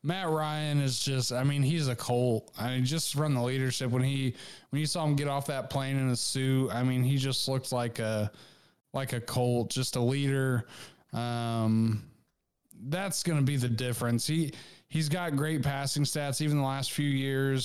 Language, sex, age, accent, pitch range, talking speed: English, male, 20-39, American, 125-150 Hz, 195 wpm